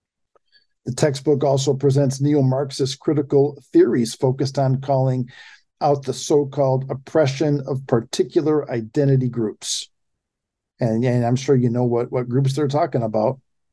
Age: 50-69